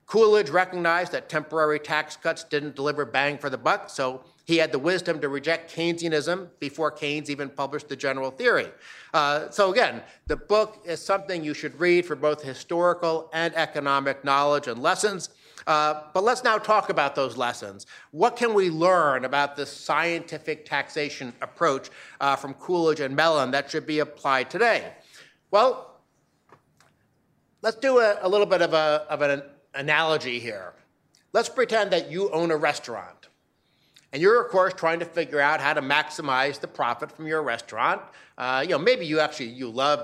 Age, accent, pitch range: 60-79, American, 140-180 Hz